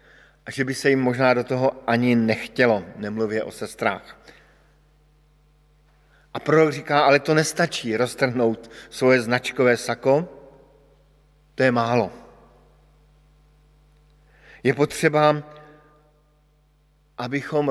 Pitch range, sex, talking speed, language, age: 135-155 Hz, male, 100 wpm, Slovak, 50-69